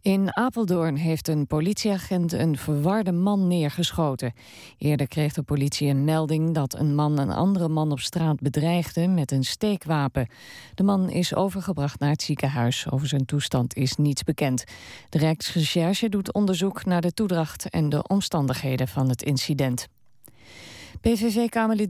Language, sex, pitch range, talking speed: Dutch, female, 145-185 Hz, 150 wpm